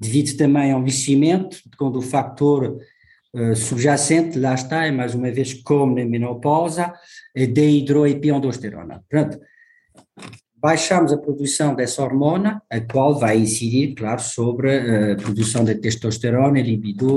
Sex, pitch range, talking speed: male, 115-150 Hz, 135 wpm